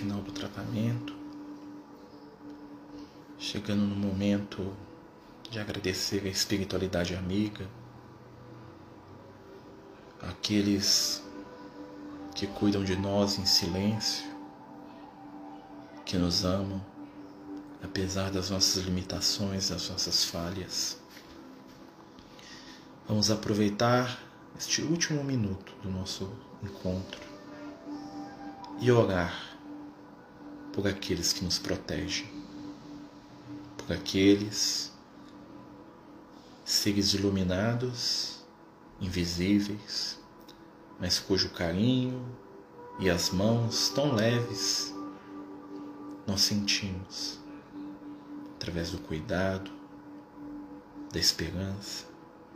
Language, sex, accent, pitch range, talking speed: Portuguese, male, Brazilian, 95-110 Hz, 70 wpm